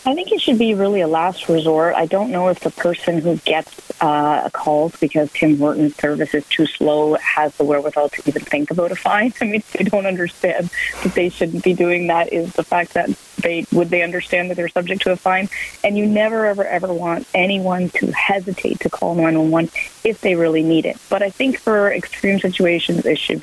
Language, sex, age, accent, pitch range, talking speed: English, female, 30-49, American, 165-205 Hz, 220 wpm